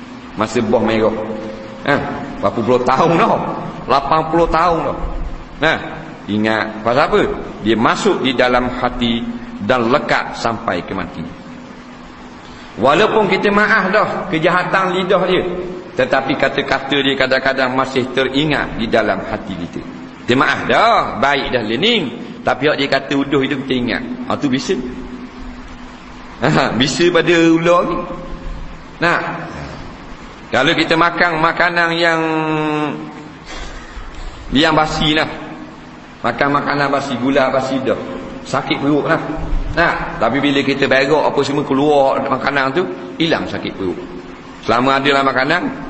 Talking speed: 130 wpm